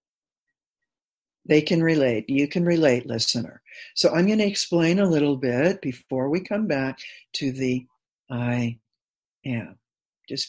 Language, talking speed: English, 135 wpm